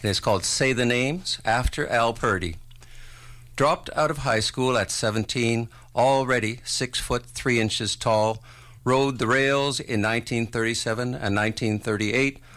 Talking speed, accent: 140 wpm, American